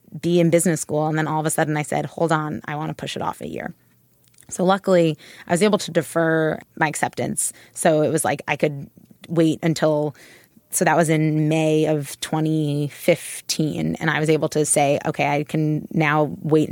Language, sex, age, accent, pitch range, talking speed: English, female, 20-39, American, 155-175 Hz, 205 wpm